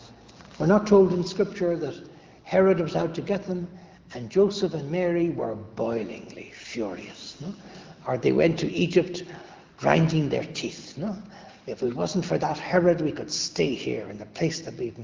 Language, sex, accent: English, male, Irish